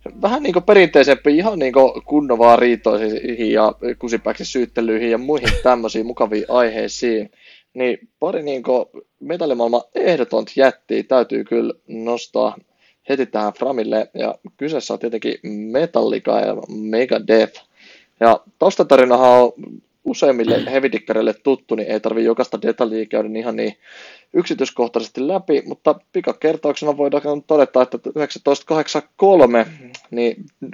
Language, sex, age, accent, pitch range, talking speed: Finnish, male, 20-39, native, 115-140 Hz, 110 wpm